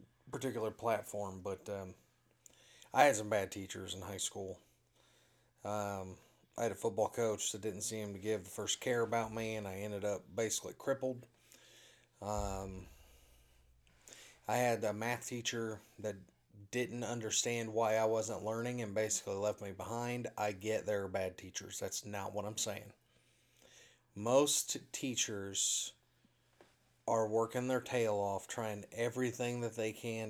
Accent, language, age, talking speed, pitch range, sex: American, English, 30-49, 150 wpm, 105-120 Hz, male